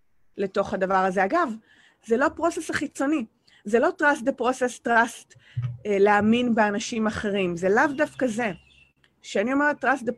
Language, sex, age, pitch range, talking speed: English, female, 30-49, 200-255 Hz, 145 wpm